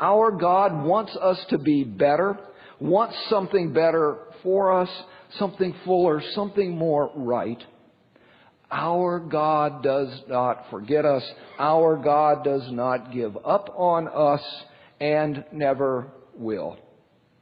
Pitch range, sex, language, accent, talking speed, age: 130-180 Hz, male, English, American, 115 wpm, 50-69